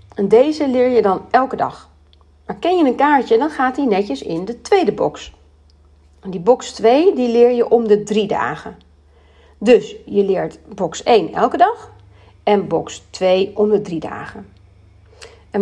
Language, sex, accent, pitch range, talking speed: Dutch, female, Dutch, 165-265 Hz, 175 wpm